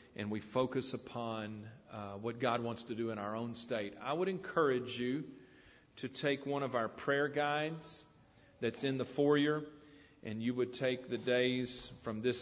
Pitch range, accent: 110-135 Hz, American